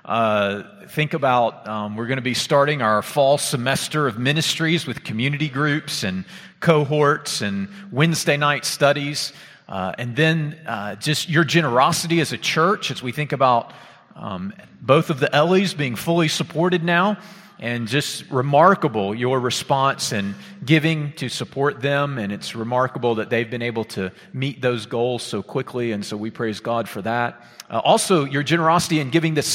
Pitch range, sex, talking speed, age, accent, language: 120-160 Hz, male, 170 wpm, 40-59, American, English